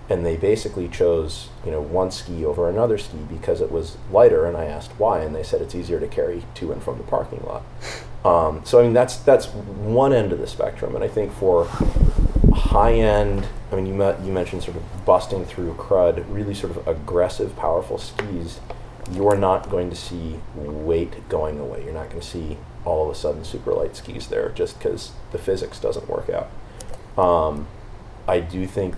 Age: 30-49